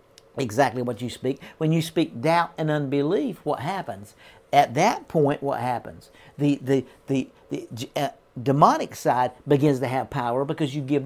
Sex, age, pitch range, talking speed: male, 50-69, 130-175 Hz, 165 wpm